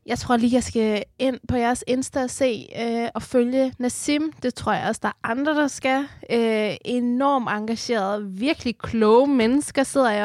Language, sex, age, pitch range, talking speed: Danish, female, 20-39, 205-250 Hz, 185 wpm